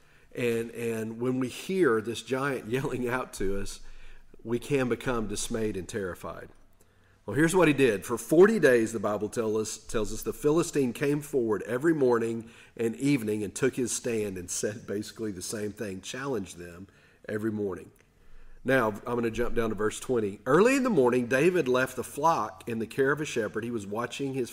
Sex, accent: male, American